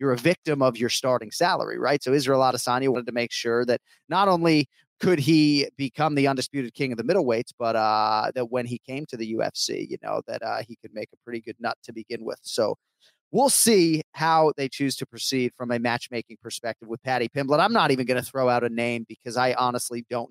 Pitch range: 115-140 Hz